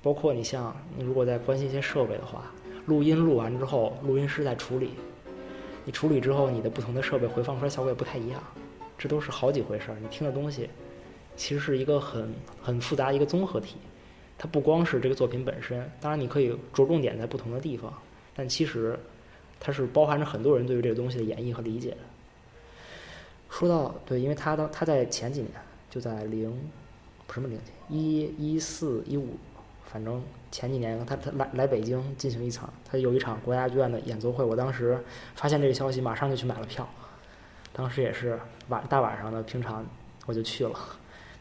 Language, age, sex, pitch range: Chinese, 20-39, male, 115-140 Hz